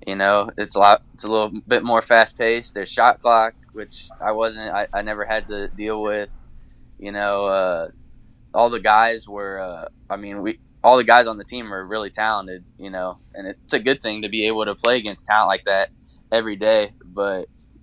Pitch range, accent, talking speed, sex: 100-110 Hz, American, 215 wpm, male